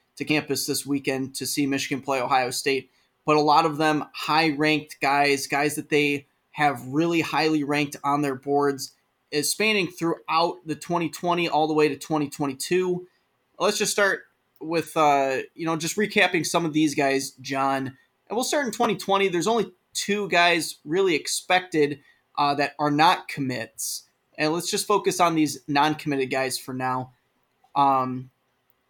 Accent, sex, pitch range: American, male, 140-185 Hz